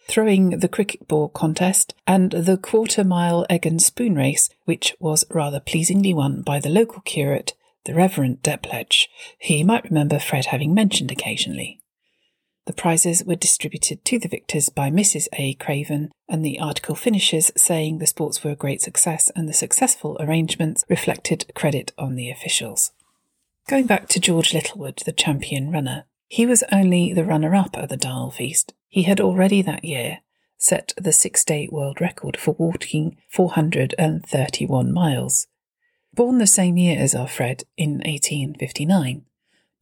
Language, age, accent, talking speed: English, 40-59, British, 155 wpm